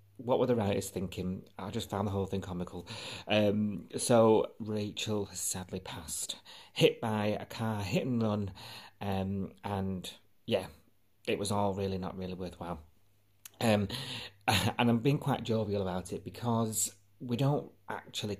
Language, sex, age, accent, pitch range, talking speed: English, male, 30-49, British, 90-110 Hz, 155 wpm